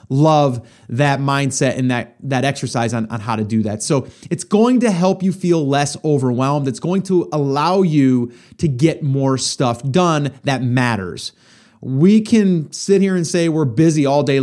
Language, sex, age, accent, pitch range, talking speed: English, male, 30-49, American, 125-170 Hz, 185 wpm